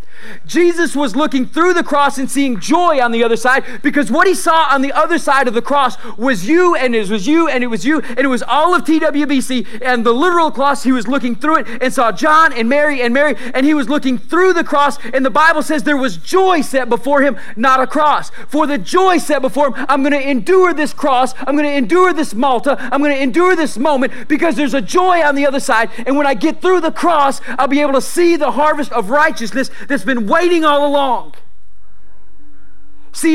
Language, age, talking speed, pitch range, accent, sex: English, 40-59, 235 wpm, 235-300 Hz, American, male